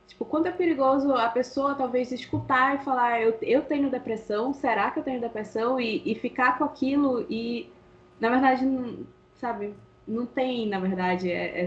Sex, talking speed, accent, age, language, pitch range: female, 185 wpm, Brazilian, 10-29, Portuguese, 195-245 Hz